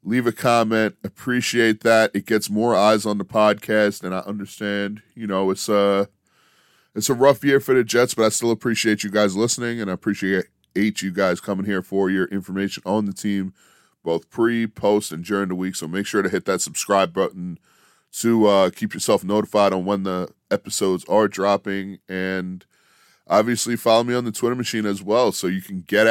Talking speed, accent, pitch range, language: 200 wpm, American, 95-115 Hz, English